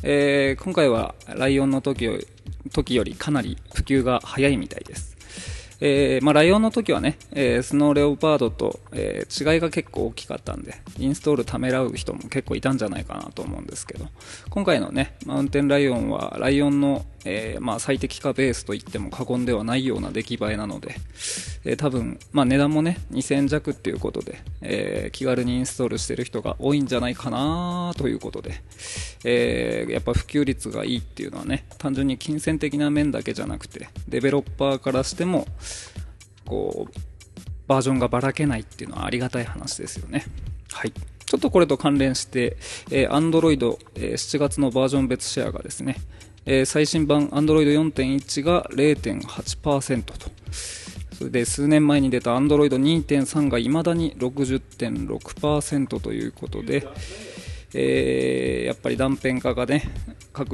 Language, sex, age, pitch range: Japanese, male, 20-39, 115-145 Hz